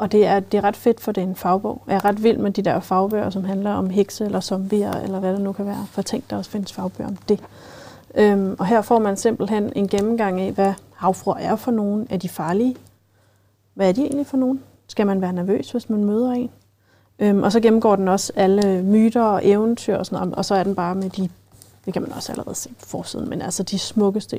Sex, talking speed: female, 250 wpm